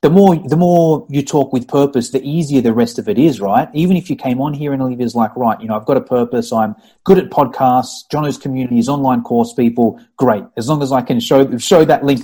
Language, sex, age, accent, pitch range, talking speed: English, male, 30-49, Australian, 130-190 Hz, 255 wpm